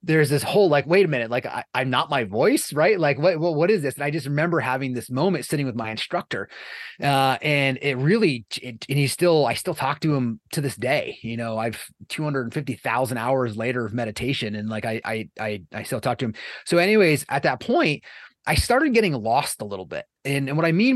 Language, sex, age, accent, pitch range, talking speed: English, male, 30-49, American, 125-165 Hz, 235 wpm